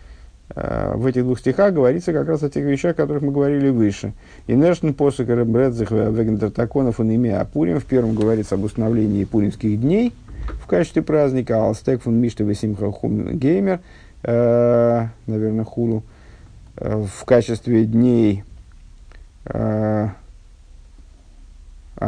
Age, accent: 50-69, native